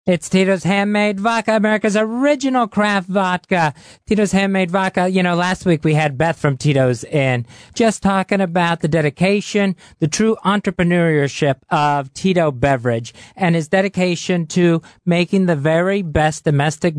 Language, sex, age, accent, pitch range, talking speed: English, male, 40-59, American, 145-185 Hz, 145 wpm